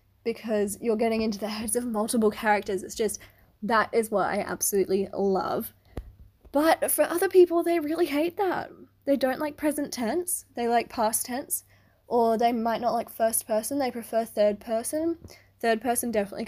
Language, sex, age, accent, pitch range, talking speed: English, female, 10-29, Australian, 200-240 Hz, 175 wpm